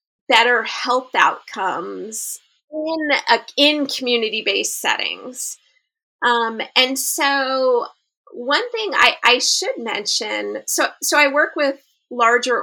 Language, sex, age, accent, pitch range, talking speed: English, female, 30-49, American, 230-310 Hz, 110 wpm